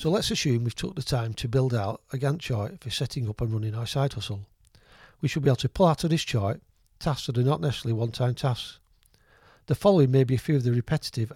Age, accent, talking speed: 40-59, British, 255 wpm